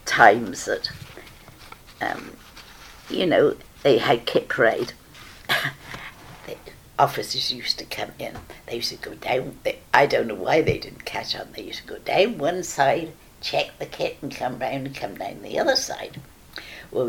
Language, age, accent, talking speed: English, 60-79, British, 170 wpm